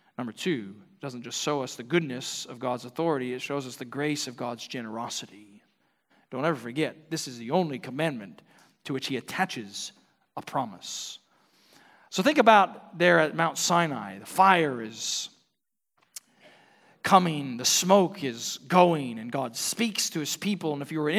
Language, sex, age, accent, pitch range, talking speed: English, male, 40-59, American, 125-180 Hz, 170 wpm